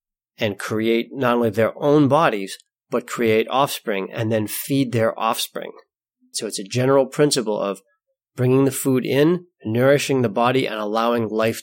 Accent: American